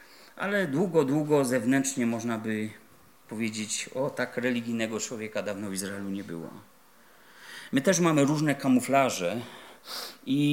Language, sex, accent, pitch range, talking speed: Polish, male, native, 115-150 Hz, 125 wpm